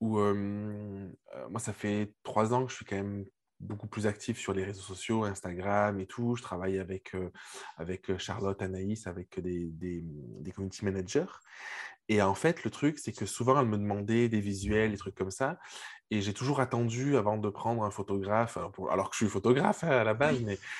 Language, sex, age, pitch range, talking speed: French, male, 20-39, 105-130 Hz, 205 wpm